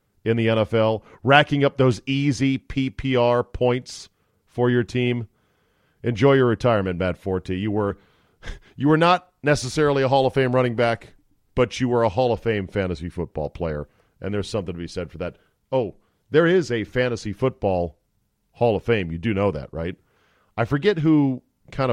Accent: American